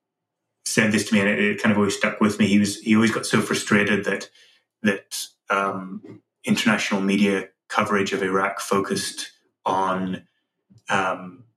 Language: English